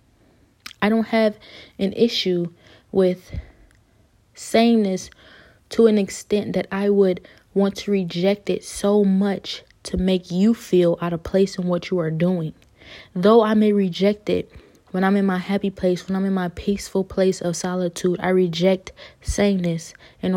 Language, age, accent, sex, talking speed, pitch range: English, 20-39, American, female, 160 wpm, 180-205 Hz